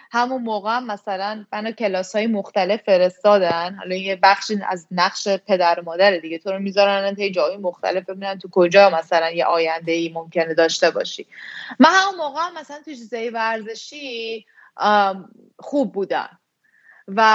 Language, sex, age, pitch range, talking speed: Persian, female, 20-39, 200-255 Hz, 155 wpm